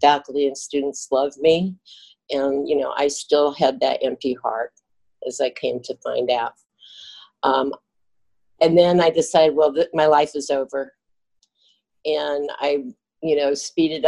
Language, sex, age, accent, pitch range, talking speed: English, female, 50-69, American, 135-155 Hz, 155 wpm